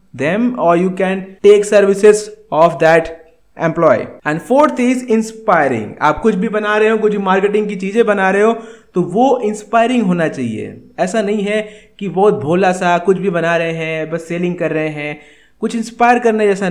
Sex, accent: male, native